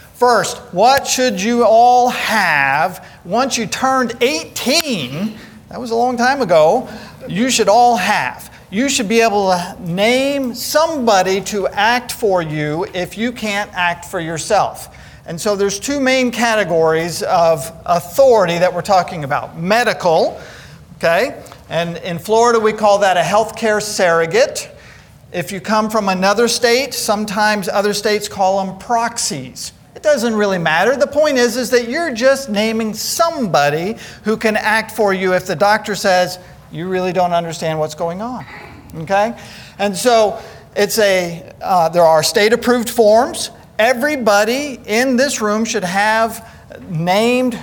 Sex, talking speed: male, 150 wpm